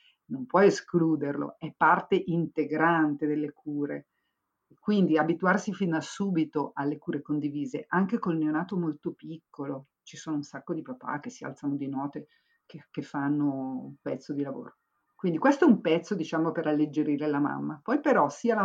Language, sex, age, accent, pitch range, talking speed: Italian, female, 50-69, native, 145-175 Hz, 170 wpm